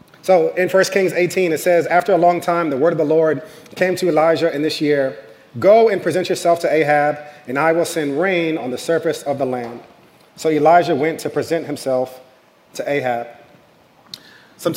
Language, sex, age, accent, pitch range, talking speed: English, male, 30-49, American, 140-175 Hz, 195 wpm